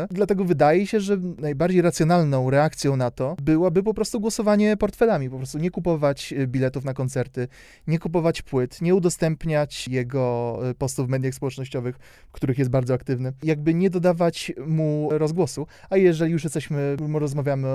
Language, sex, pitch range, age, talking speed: Polish, male, 125-150 Hz, 30-49, 155 wpm